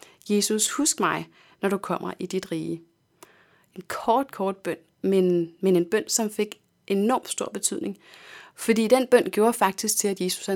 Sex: female